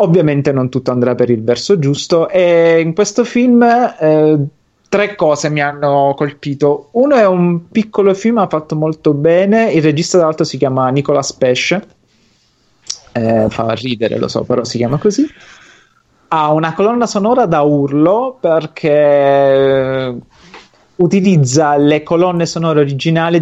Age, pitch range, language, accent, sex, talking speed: 30-49, 125-160 Hz, Italian, native, male, 140 wpm